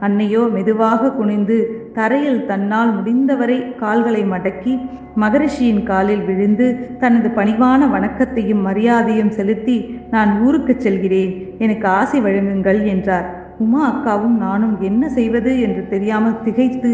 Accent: native